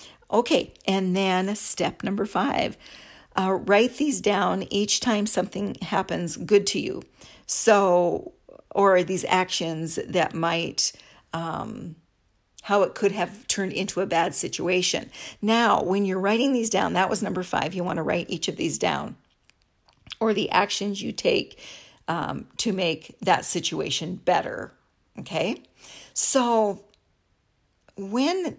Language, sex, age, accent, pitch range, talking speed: English, female, 50-69, American, 180-215 Hz, 135 wpm